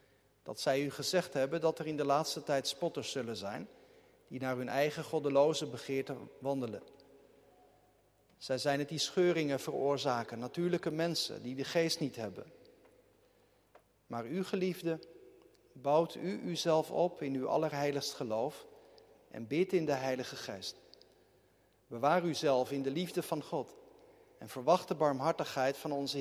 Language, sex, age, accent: Dutch, male, 50-69, Dutch